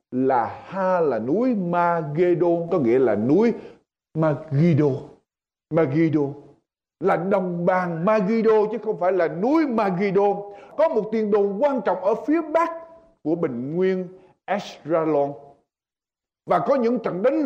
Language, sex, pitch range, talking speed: Vietnamese, male, 175-240 Hz, 135 wpm